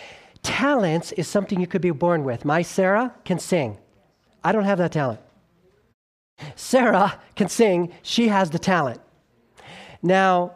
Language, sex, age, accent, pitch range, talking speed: English, male, 40-59, American, 145-190 Hz, 140 wpm